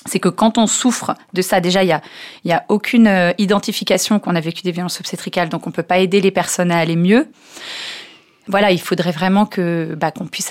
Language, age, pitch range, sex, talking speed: French, 30-49, 180-220 Hz, female, 225 wpm